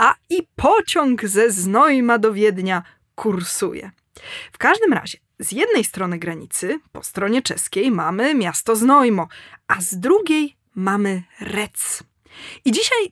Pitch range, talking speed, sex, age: 200-320 Hz, 130 wpm, female, 20-39